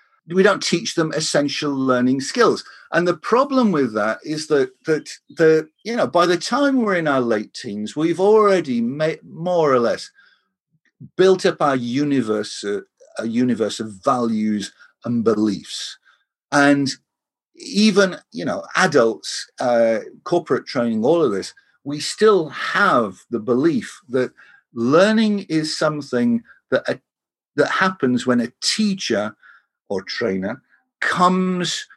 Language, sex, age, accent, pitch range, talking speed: English, male, 50-69, British, 130-185 Hz, 135 wpm